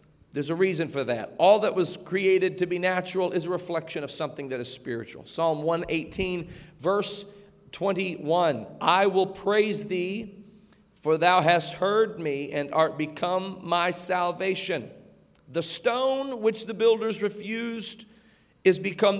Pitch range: 165-215 Hz